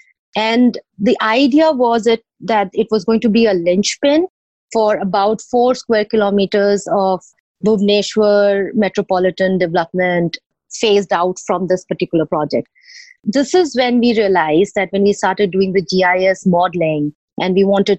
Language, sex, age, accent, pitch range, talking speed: English, female, 30-49, Indian, 180-210 Hz, 145 wpm